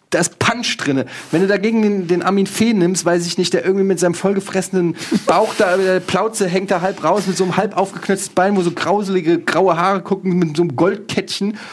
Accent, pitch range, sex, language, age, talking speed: German, 165-205 Hz, male, German, 30-49, 225 wpm